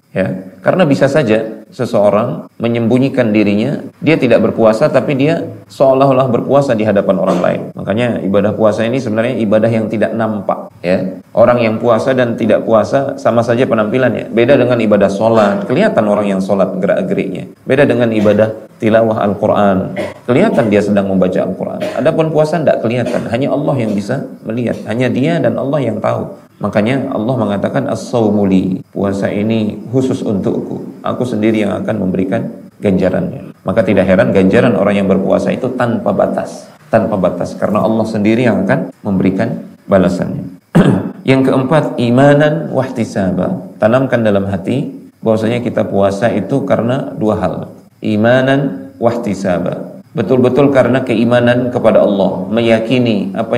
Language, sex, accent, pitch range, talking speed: Indonesian, male, native, 105-125 Hz, 140 wpm